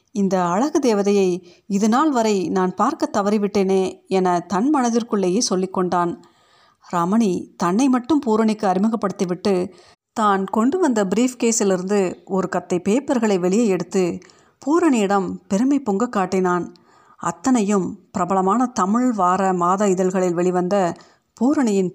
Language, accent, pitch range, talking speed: Tamil, native, 185-230 Hz, 110 wpm